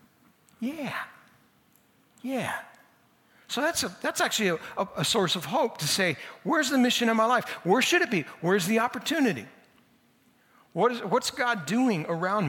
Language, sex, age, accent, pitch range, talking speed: English, male, 60-79, American, 160-235 Hz, 160 wpm